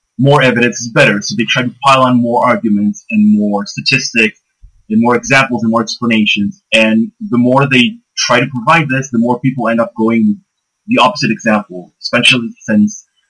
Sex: male